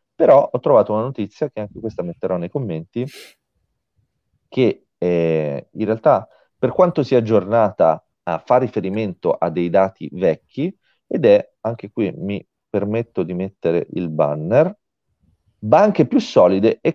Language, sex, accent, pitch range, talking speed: Italian, male, native, 90-140 Hz, 140 wpm